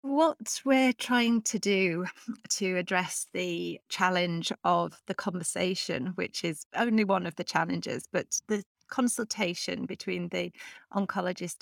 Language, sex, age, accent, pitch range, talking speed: English, female, 30-49, British, 175-210 Hz, 130 wpm